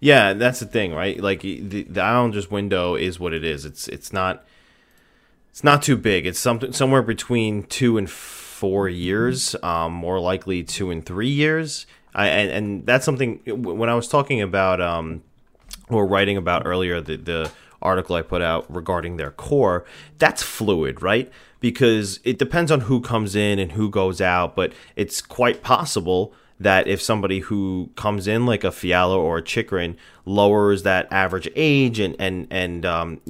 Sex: male